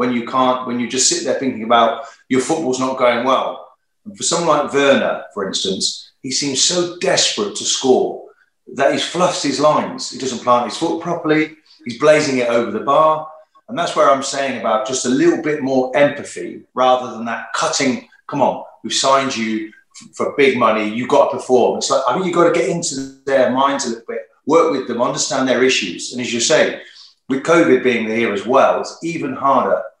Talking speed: 215 wpm